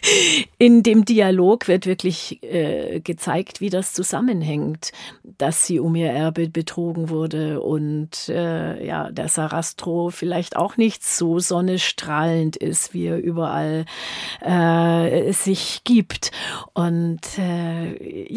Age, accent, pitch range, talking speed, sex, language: 40-59, German, 165-205 Hz, 120 wpm, female, German